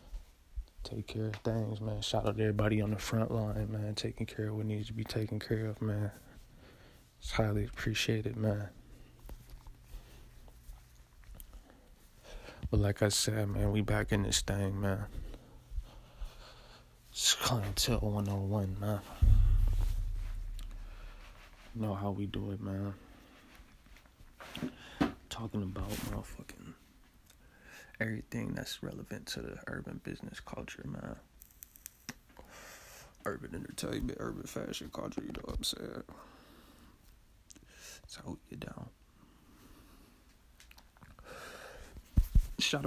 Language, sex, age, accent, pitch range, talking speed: English, male, 20-39, American, 95-110 Hz, 110 wpm